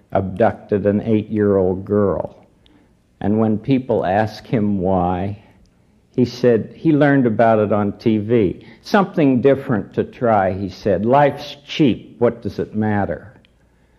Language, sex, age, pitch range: English, male, 60-79, 90-115 Hz